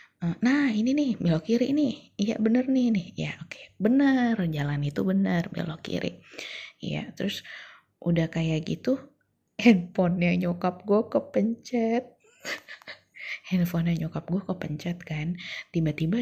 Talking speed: 125 wpm